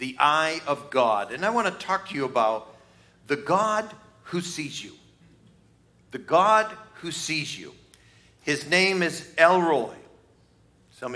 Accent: American